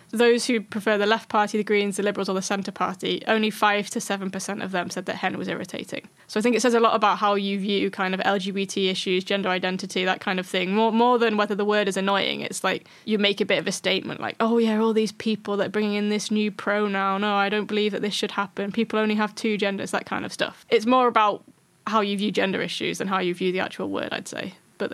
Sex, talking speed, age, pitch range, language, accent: female, 265 wpm, 10-29, 185-215 Hz, English, British